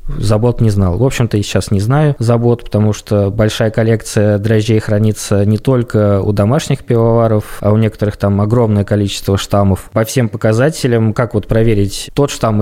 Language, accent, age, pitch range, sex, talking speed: Russian, native, 20-39, 105-120 Hz, male, 170 wpm